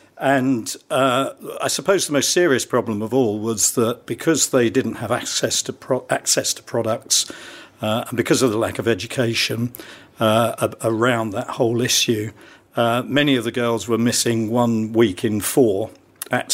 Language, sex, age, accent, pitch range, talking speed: English, male, 50-69, British, 110-130 Hz, 175 wpm